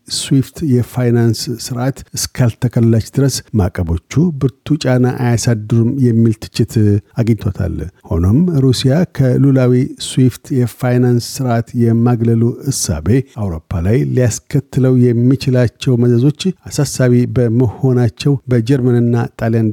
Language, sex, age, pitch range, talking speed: Amharic, male, 60-79, 115-130 Hz, 90 wpm